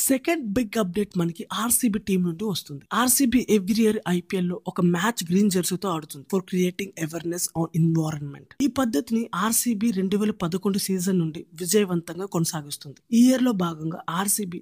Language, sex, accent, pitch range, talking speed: Telugu, female, native, 170-215 Hz, 140 wpm